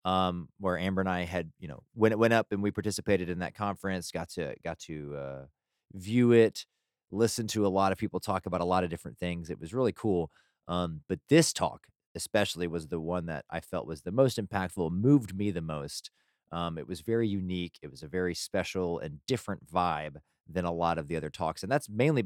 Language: English